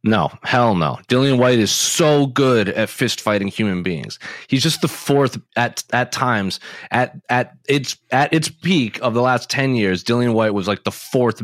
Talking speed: 195 wpm